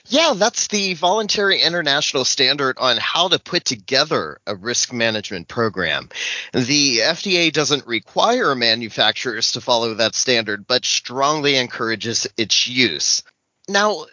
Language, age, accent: English, 30-49, American